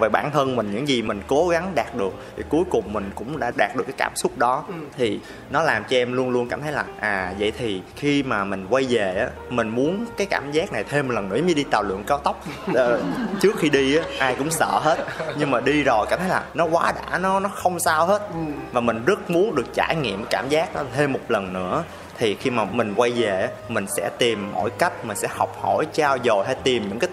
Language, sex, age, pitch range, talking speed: Vietnamese, male, 20-39, 115-160 Hz, 260 wpm